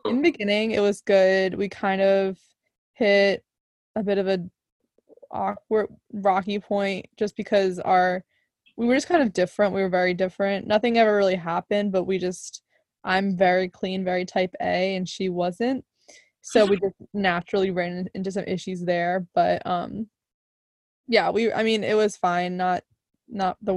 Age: 20-39